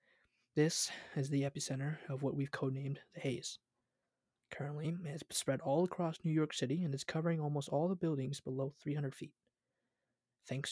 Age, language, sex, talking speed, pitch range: 20-39, English, male, 170 wpm, 130-145 Hz